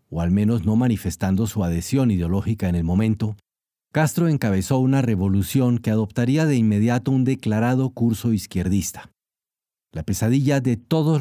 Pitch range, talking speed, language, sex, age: 100-135 Hz, 145 wpm, Spanish, male, 40-59